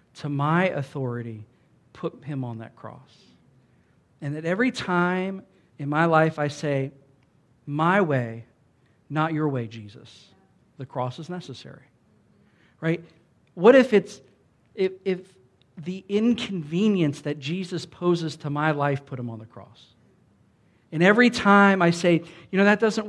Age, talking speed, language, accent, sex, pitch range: 50-69, 145 wpm, English, American, male, 140-180 Hz